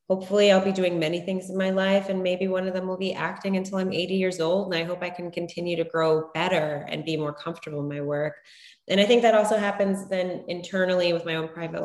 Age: 20-39